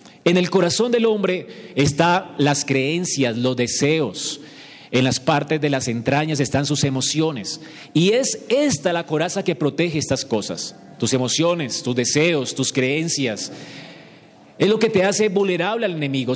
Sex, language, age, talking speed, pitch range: male, Spanish, 40-59, 155 wpm, 130-180 Hz